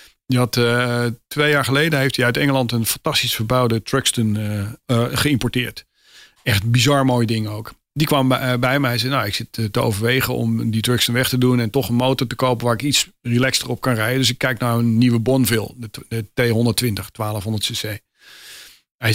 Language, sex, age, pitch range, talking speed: Dutch, male, 40-59, 115-140 Hz, 210 wpm